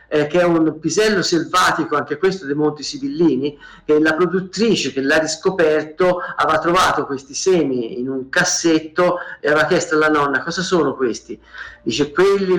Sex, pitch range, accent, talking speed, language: male, 145-185 Hz, native, 155 wpm, Italian